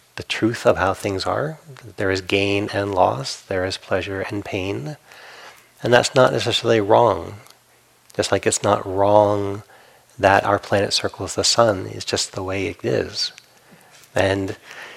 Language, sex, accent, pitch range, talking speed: English, male, American, 100-120 Hz, 155 wpm